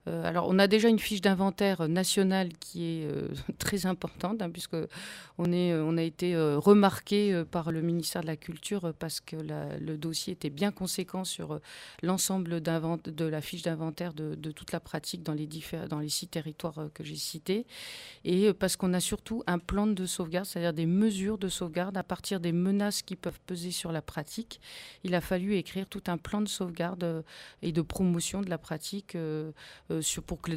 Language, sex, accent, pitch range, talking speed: French, female, French, 160-190 Hz, 190 wpm